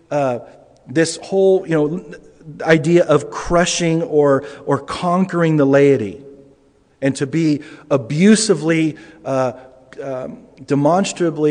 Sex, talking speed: male, 105 wpm